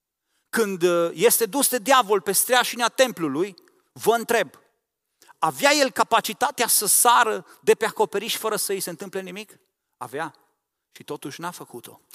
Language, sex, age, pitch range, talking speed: Romanian, male, 40-59, 175-235 Hz, 145 wpm